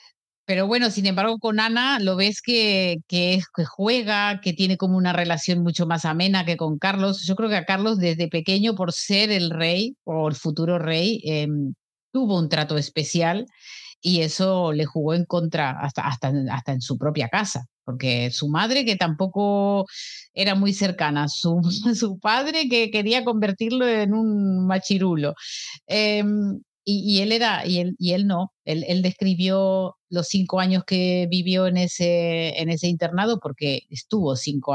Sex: female